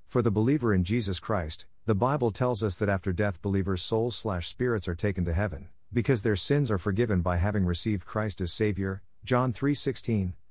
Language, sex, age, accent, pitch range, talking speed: English, male, 50-69, American, 90-115 Hz, 190 wpm